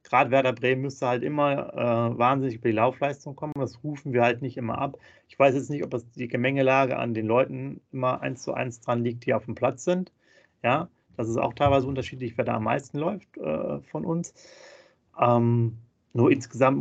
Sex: male